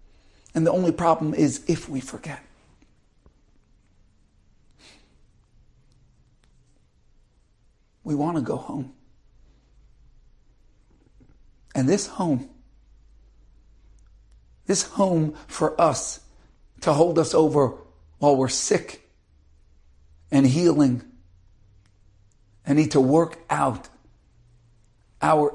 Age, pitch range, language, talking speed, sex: 60-79, 105-160 Hz, English, 80 wpm, male